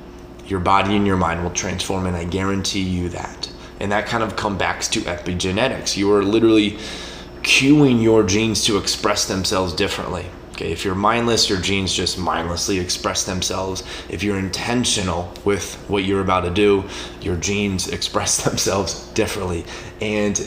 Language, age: English, 20-39